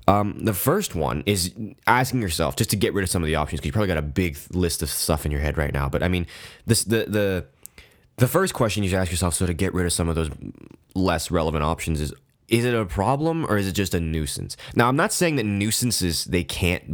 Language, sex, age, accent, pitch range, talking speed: English, male, 20-39, American, 80-100 Hz, 260 wpm